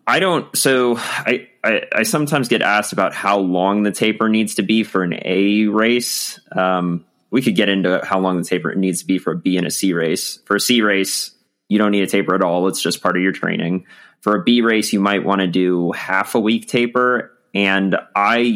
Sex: male